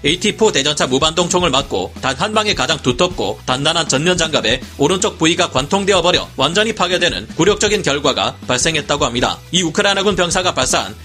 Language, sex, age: Korean, male, 40-59